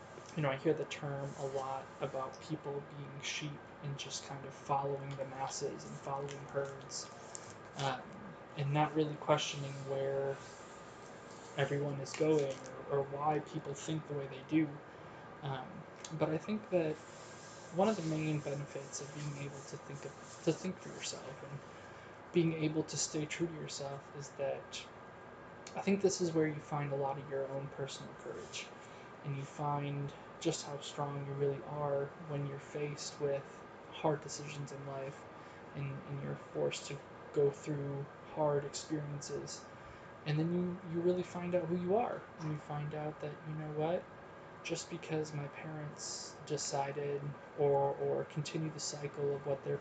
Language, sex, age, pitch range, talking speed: English, male, 20-39, 140-155 Hz, 170 wpm